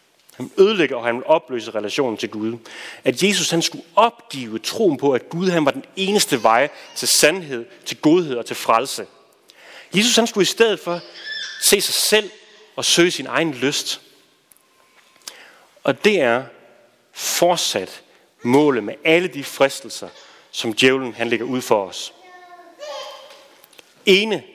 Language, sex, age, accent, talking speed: Danish, male, 30-49, native, 150 wpm